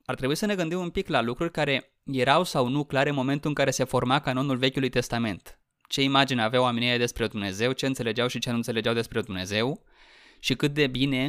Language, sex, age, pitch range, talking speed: Romanian, male, 20-39, 115-140 Hz, 220 wpm